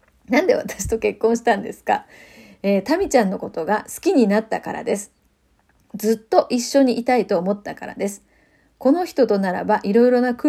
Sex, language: female, Japanese